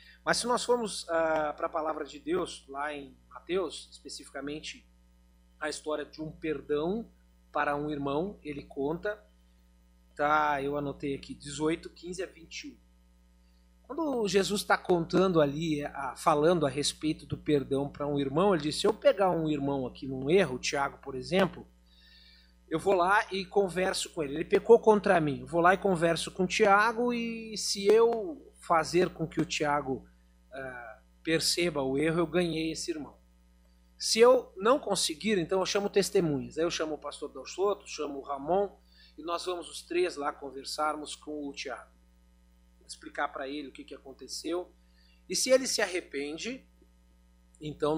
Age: 40-59